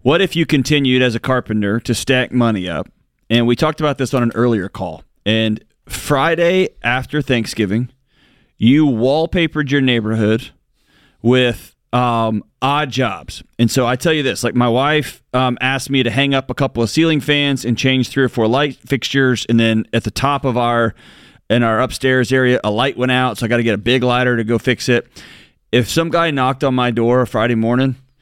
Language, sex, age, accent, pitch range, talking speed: English, male, 30-49, American, 115-135 Hz, 205 wpm